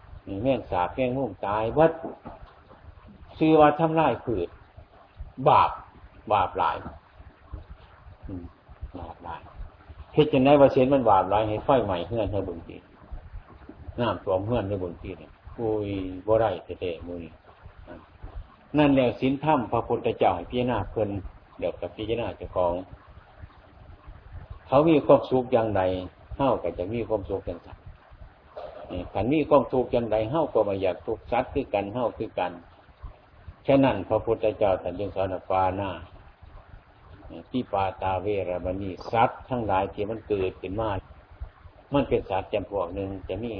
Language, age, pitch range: Thai, 60-79, 90-115 Hz